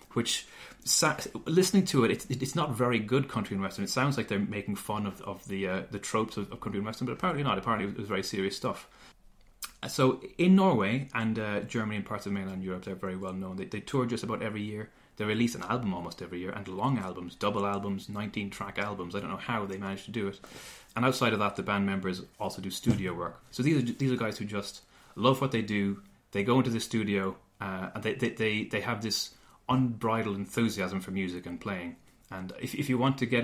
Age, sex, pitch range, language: 30-49, male, 95-120 Hz, English